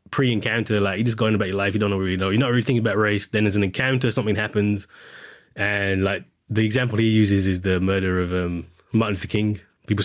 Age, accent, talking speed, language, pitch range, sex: 20-39, British, 235 wpm, English, 105-150 Hz, male